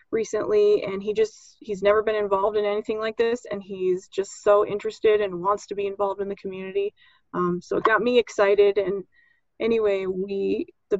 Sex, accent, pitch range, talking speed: female, American, 195-230 Hz, 190 wpm